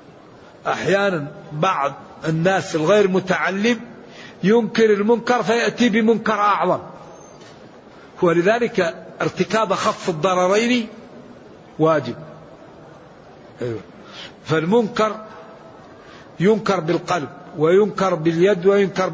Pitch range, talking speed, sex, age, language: 175-225 Hz, 65 wpm, male, 60-79, Arabic